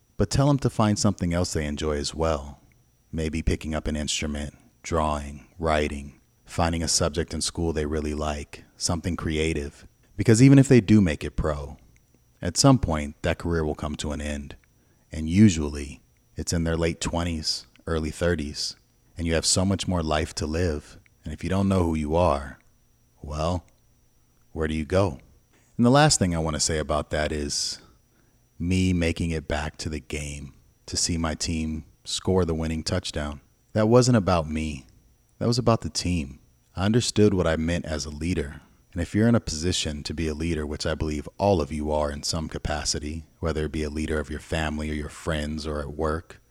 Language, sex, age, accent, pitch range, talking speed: English, male, 30-49, American, 75-95 Hz, 195 wpm